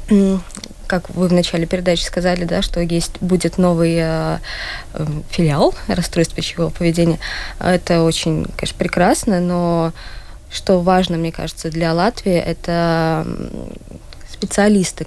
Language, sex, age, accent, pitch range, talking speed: Russian, female, 20-39, native, 165-190 Hz, 120 wpm